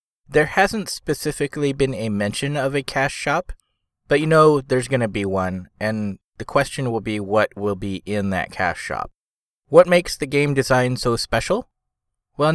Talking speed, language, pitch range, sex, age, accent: 180 wpm, English, 110-135 Hz, male, 20-39, American